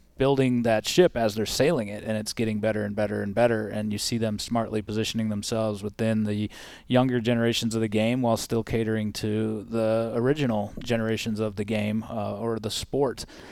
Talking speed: 190 wpm